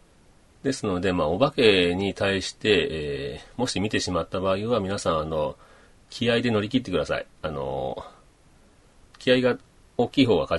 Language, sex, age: Japanese, male, 40-59